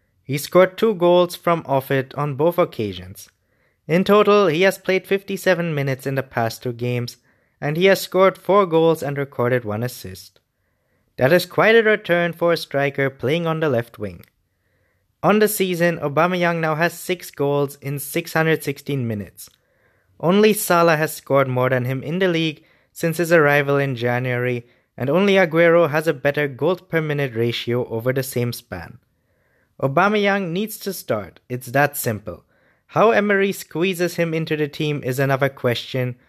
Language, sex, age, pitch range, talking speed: English, male, 20-39, 125-175 Hz, 170 wpm